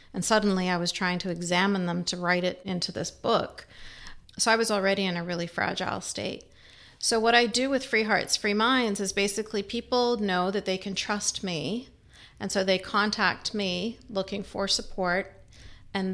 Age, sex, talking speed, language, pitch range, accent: 40-59, female, 185 wpm, English, 180-205 Hz, American